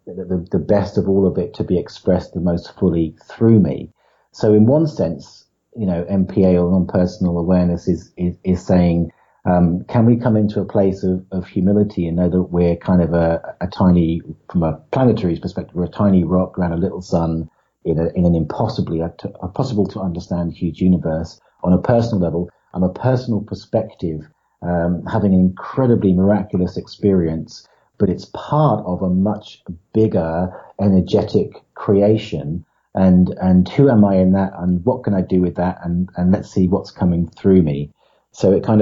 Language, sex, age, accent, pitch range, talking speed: English, male, 40-59, British, 90-105 Hz, 185 wpm